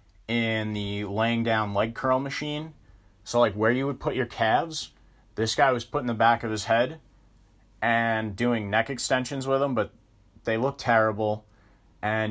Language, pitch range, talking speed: English, 105-125 Hz, 170 wpm